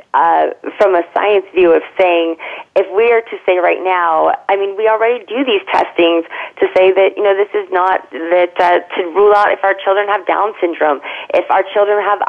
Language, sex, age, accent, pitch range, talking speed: English, female, 30-49, American, 175-210 Hz, 215 wpm